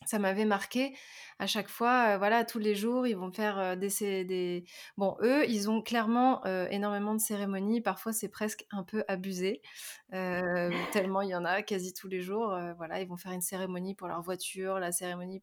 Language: French